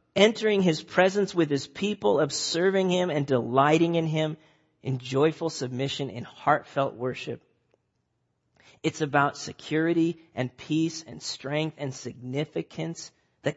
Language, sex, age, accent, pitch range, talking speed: English, male, 40-59, American, 130-160 Hz, 125 wpm